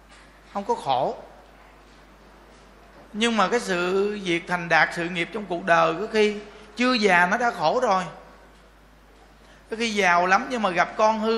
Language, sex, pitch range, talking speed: Vietnamese, male, 155-215 Hz, 170 wpm